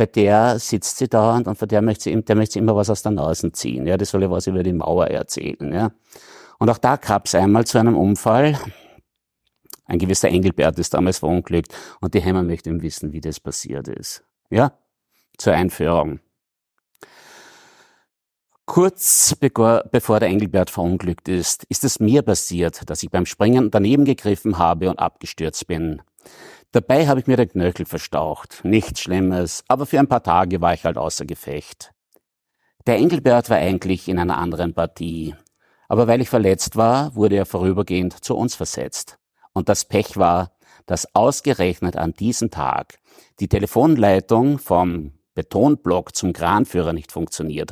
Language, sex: German, male